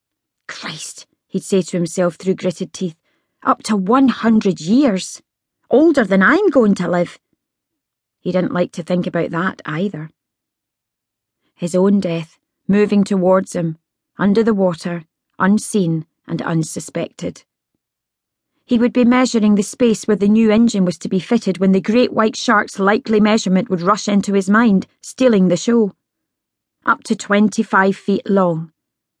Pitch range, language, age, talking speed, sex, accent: 175-220 Hz, English, 30-49, 150 wpm, female, British